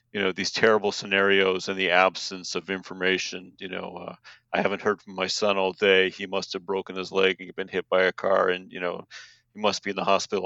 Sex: male